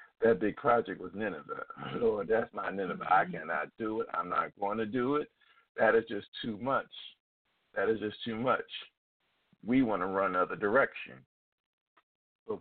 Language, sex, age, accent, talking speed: English, male, 50-69, American, 170 wpm